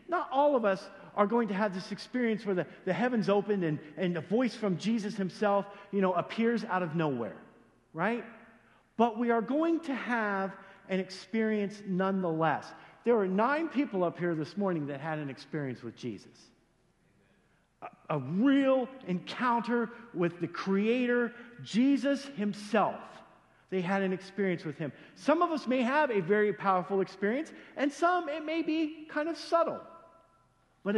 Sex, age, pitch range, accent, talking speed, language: male, 50-69, 165-235 Hz, American, 165 wpm, English